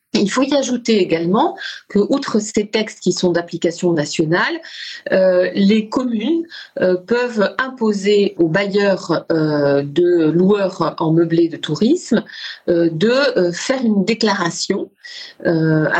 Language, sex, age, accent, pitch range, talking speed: French, female, 40-59, French, 170-215 Hz, 130 wpm